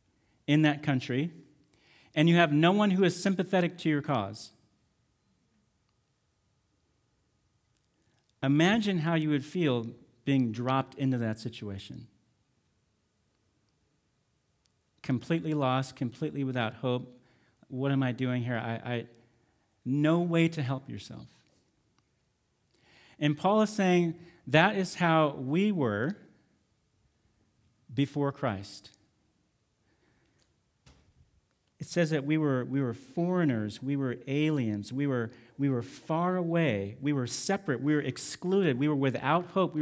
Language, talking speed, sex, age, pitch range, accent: English, 120 wpm, male, 40-59, 120-160 Hz, American